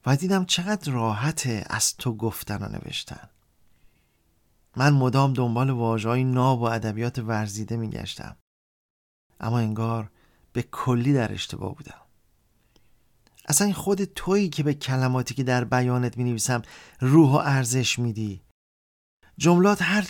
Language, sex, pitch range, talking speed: Persian, male, 115-145 Hz, 120 wpm